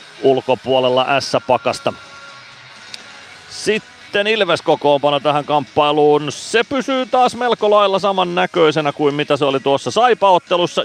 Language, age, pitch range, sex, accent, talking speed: Finnish, 30-49, 125-175 Hz, male, native, 100 wpm